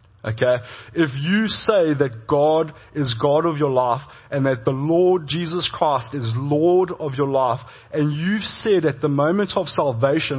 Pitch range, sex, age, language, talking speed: 120-170 Hz, male, 30-49, English, 175 wpm